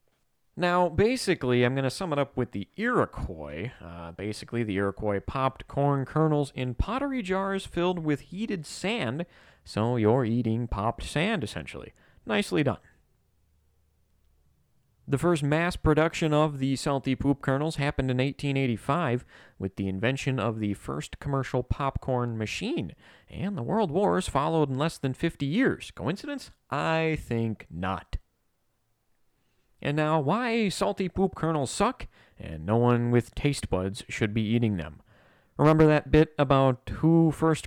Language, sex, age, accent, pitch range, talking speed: English, male, 30-49, American, 105-155 Hz, 145 wpm